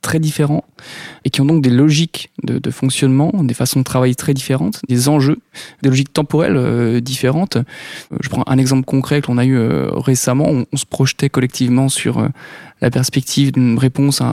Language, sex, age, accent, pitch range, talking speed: French, male, 20-39, French, 130-145 Hz, 190 wpm